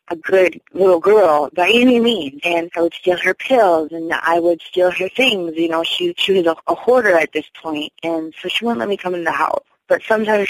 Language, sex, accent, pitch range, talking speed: English, female, American, 160-185 Hz, 240 wpm